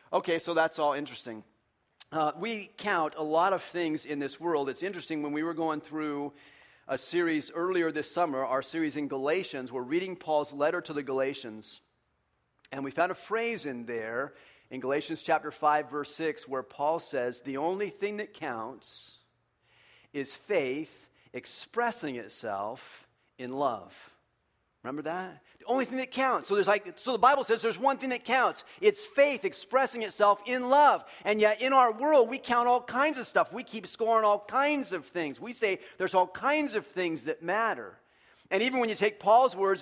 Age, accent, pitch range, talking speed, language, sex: 40-59, American, 150-225 Hz, 185 wpm, English, male